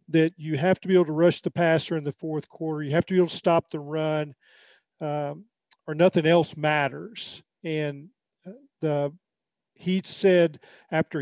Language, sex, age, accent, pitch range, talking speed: English, male, 40-59, American, 150-180 Hz, 175 wpm